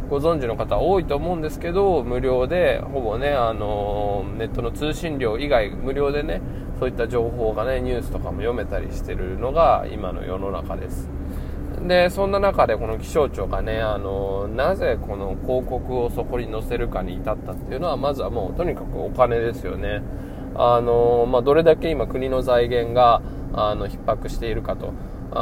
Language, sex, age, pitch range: Japanese, male, 20-39, 100-130 Hz